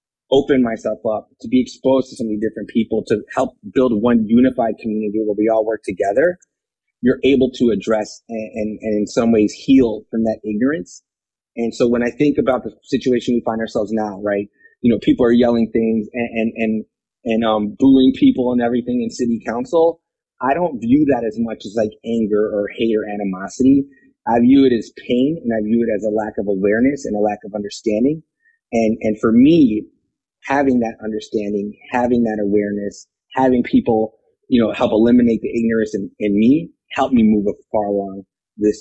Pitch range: 105-130 Hz